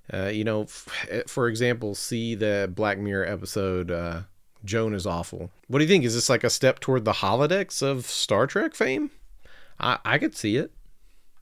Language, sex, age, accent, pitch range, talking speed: English, male, 40-59, American, 120-170 Hz, 185 wpm